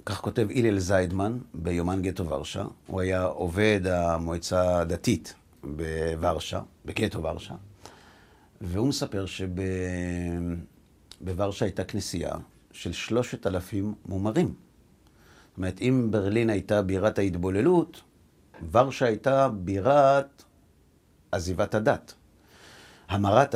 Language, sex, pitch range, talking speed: Hebrew, male, 85-115 Hz, 95 wpm